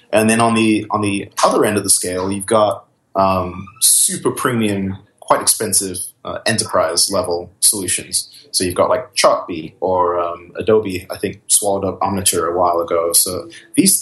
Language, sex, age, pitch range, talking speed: English, male, 30-49, 95-110 Hz, 170 wpm